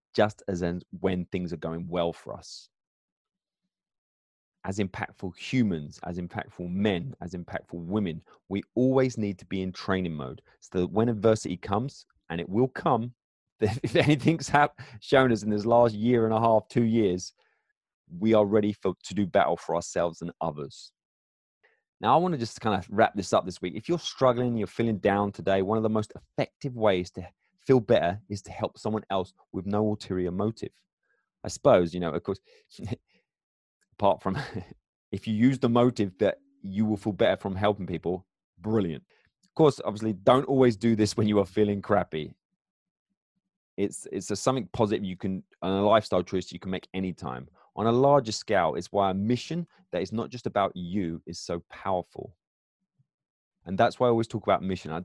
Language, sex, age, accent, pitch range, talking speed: English, male, 30-49, British, 90-120 Hz, 185 wpm